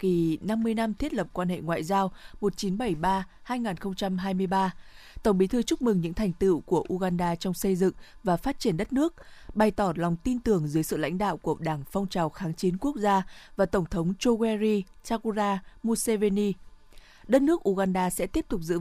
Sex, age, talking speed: female, 20-39, 185 wpm